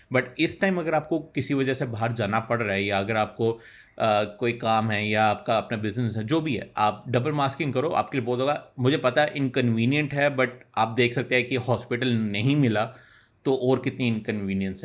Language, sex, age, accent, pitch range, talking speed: Hindi, male, 30-49, native, 115-135 Hz, 220 wpm